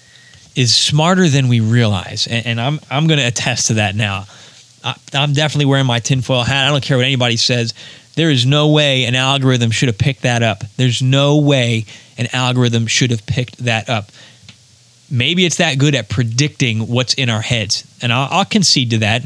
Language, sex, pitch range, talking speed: English, male, 120-145 Hz, 205 wpm